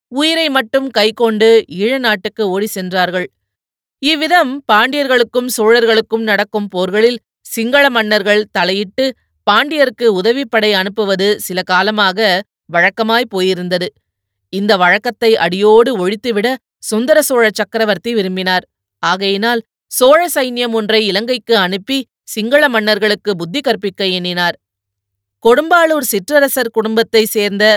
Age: 20-39